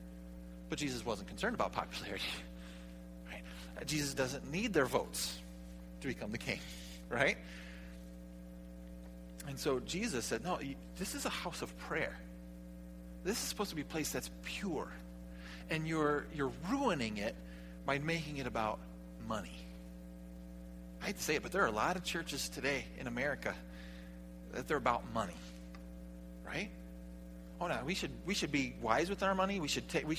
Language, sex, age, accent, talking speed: English, male, 40-59, American, 160 wpm